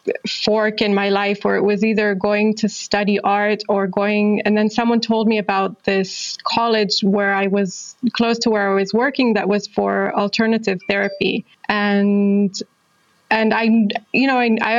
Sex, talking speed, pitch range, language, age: female, 175 wpm, 200-220 Hz, English, 20-39